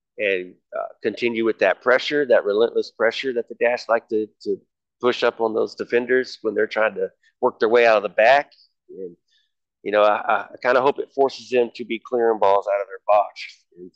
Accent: American